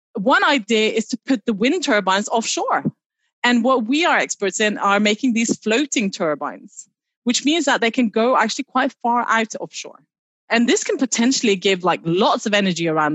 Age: 30-49